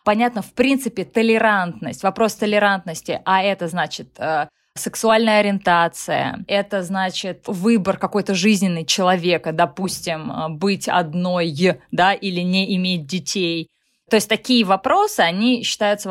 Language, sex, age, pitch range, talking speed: Russian, female, 20-39, 180-230 Hz, 115 wpm